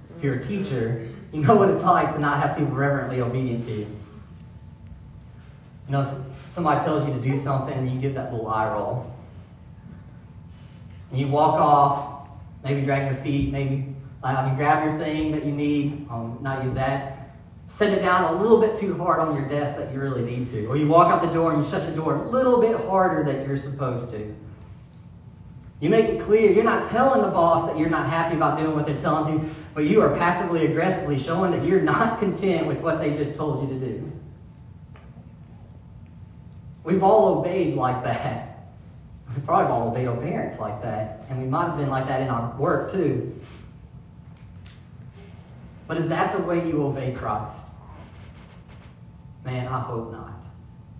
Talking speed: 190 wpm